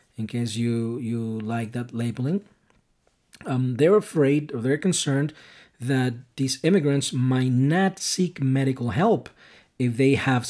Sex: male